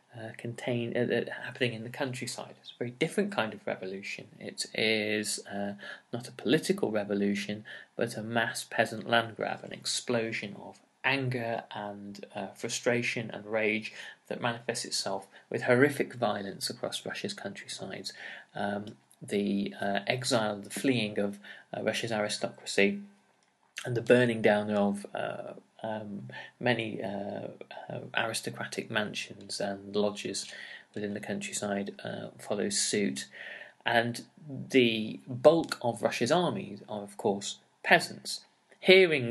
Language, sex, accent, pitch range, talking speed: English, male, British, 100-120 Hz, 130 wpm